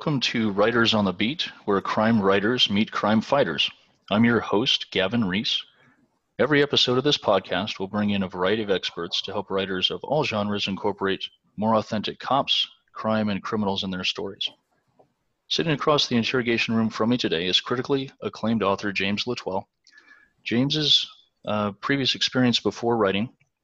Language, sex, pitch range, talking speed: English, male, 105-120 Hz, 165 wpm